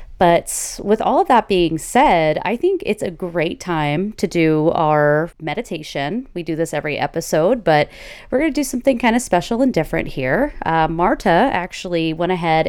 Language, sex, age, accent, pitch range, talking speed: English, female, 30-49, American, 160-210 Hz, 180 wpm